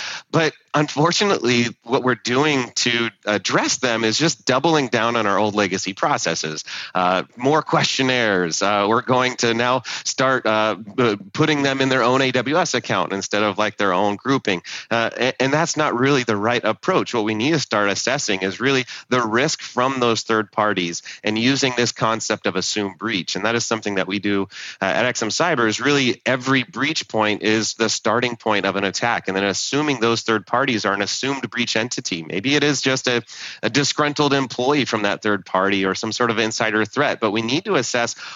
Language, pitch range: English, 100-130 Hz